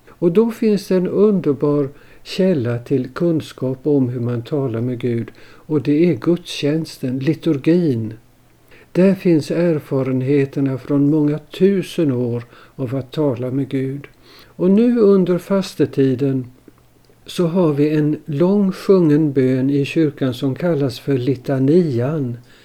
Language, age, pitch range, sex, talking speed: Swedish, 60-79, 135-180 Hz, male, 130 wpm